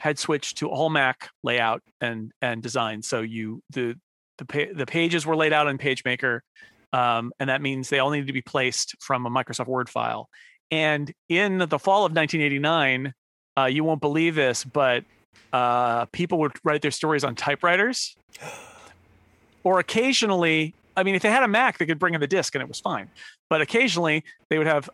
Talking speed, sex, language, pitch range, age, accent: 190 wpm, male, English, 130-165 Hz, 40-59, American